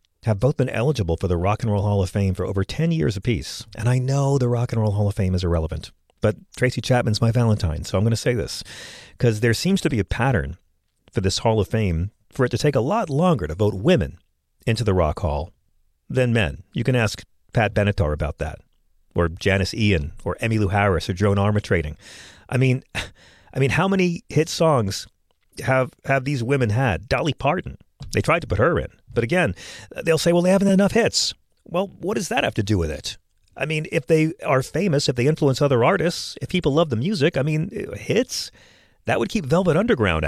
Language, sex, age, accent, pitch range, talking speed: English, male, 40-59, American, 90-135 Hz, 220 wpm